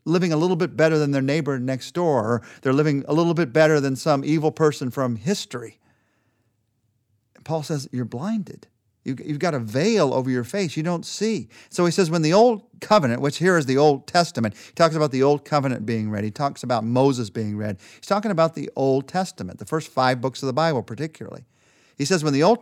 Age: 50-69